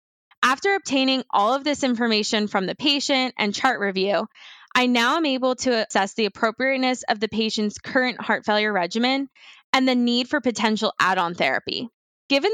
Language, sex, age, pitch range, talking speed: English, female, 10-29, 215-275 Hz, 165 wpm